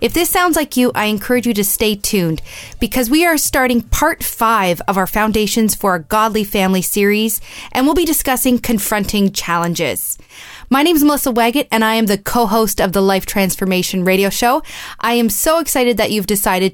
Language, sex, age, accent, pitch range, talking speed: English, female, 20-39, American, 195-255 Hz, 195 wpm